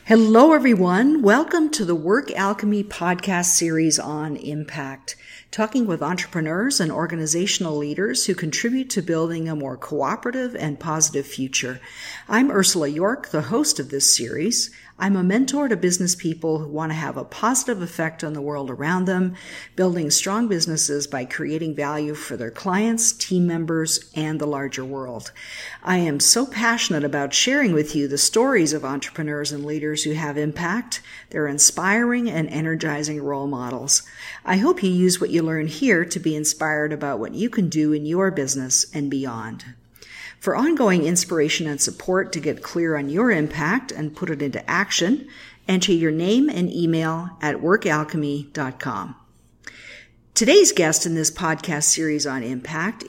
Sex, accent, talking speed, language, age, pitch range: female, American, 160 wpm, English, 50-69, 150-195 Hz